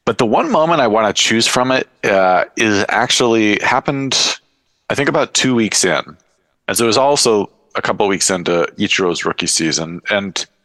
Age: 40-59